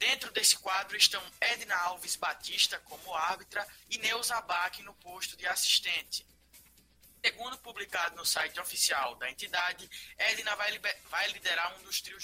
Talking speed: 145 wpm